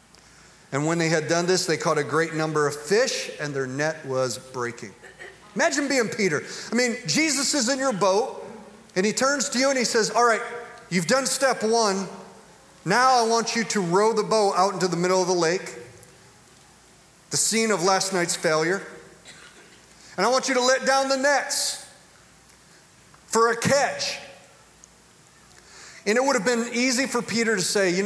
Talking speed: 185 wpm